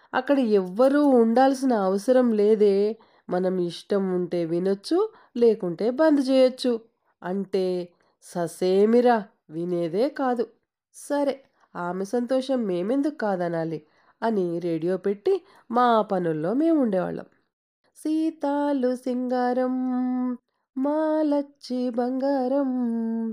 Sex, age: female, 30-49